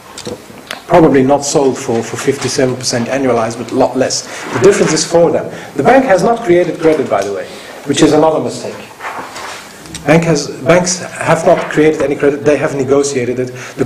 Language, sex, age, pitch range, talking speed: English, male, 40-59, 125-165 Hz, 175 wpm